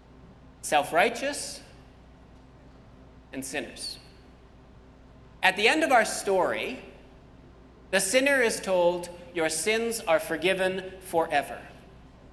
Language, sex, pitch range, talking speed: English, male, 130-185 Hz, 90 wpm